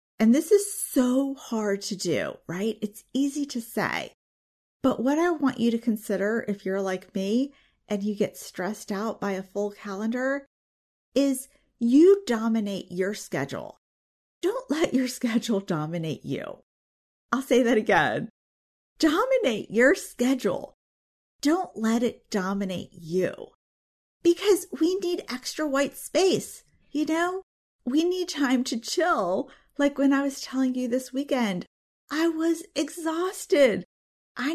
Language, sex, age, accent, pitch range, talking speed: English, female, 40-59, American, 205-285 Hz, 140 wpm